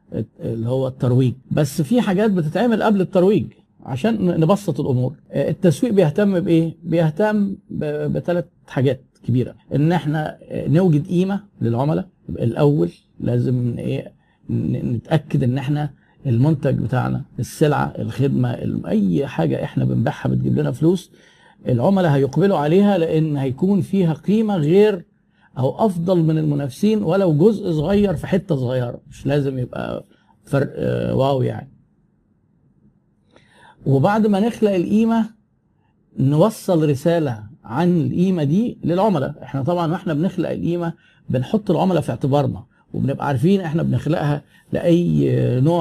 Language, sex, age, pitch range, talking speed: Arabic, male, 50-69, 135-180 Hz, 115 wpm